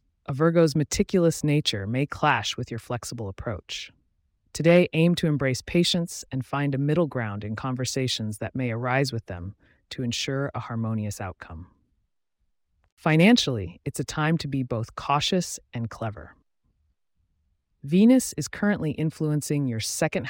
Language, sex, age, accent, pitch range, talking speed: English, female, 30-49, American, 110-155 Hz, 140 wpm